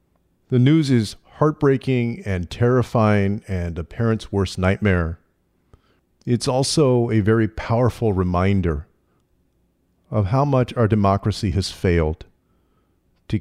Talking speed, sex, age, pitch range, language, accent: 110 wpm, male, 50-69, 90-110 Hz, English, American